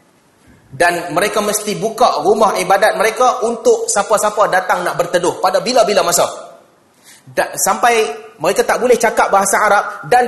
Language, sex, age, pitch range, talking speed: Malay, male, 30-49, 205-295 Hz, 140 wpm